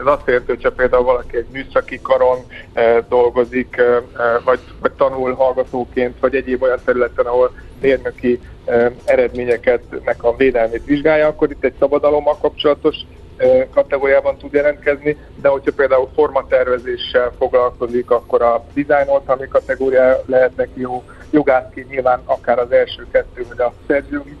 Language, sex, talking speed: Hungarian, male, 135 wpm